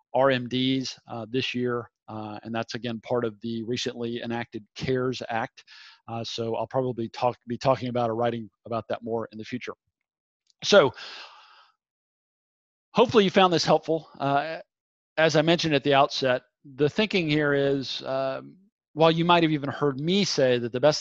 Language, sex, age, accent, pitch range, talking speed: English, male, 40-59, American, 125-150 Hz, 170 wpm